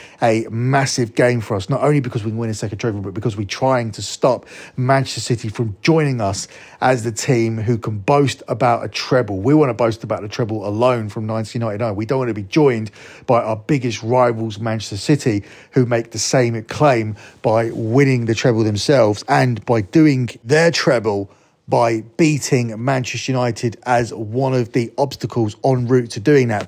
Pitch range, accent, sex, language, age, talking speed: 110-135 Hz, British, male, English, 30-49, 190 wpm